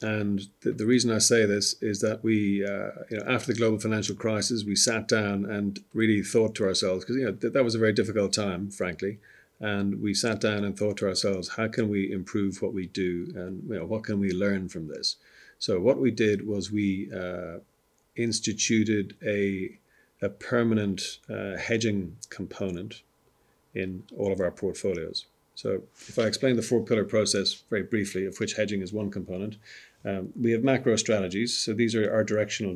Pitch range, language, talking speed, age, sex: 95-110 Hz, Czech, 195 wpm, 40-59, male